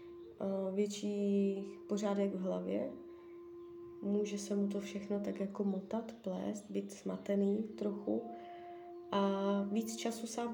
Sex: female